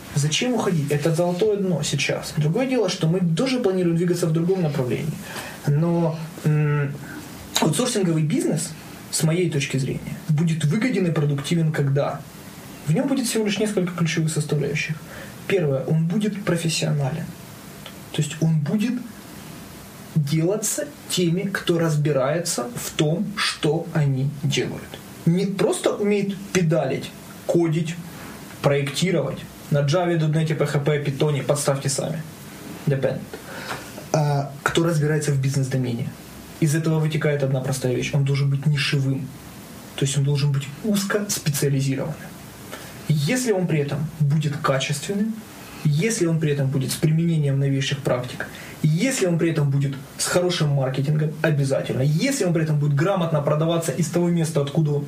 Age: 20-39